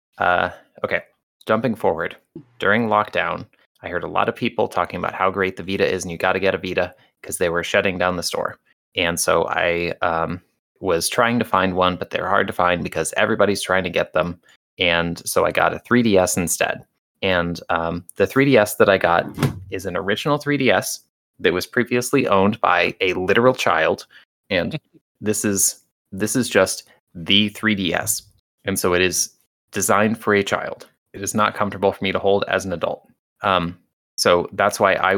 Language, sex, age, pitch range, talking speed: English, male, 20-39, 90-105 Hz, 190 wpm